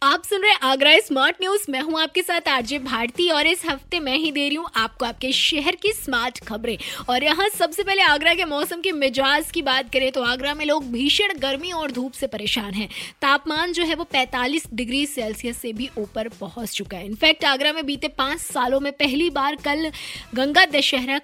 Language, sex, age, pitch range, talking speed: Hindi, female, 20-39, 255-315 Hz, 210 wpm